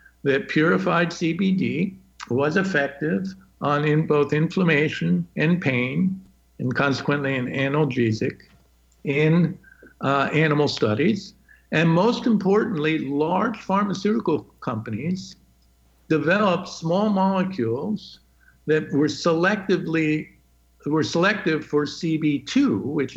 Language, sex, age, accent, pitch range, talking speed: English, male, 60-79, American, 120-170 Hz, 95 wpm